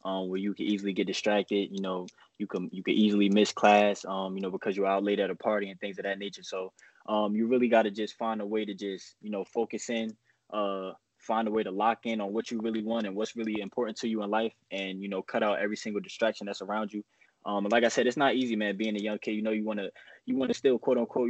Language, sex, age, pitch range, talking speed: English, male, 20-39, 100-110 Hz, 285 wpm